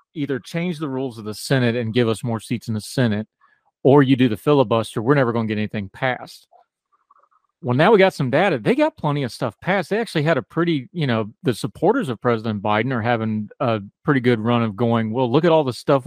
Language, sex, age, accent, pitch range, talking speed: English, male, 40-59, American, 115-150 Hz, 245 wpm